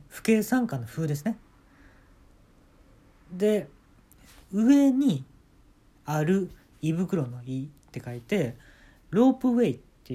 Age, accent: 40-59, native